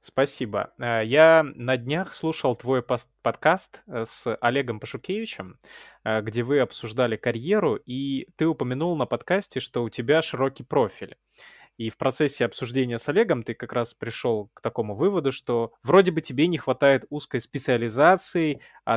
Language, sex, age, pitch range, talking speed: Russian, male, 20-39, 120-155 Hz, 145 wpm